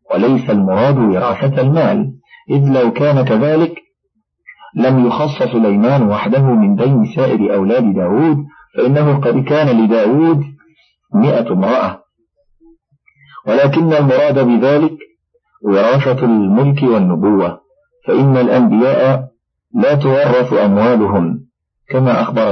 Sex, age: male, 50-69